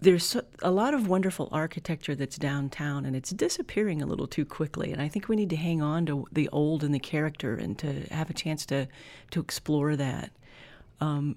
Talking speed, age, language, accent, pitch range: 205 wpm, 40-59, English, American, 140-175 Hz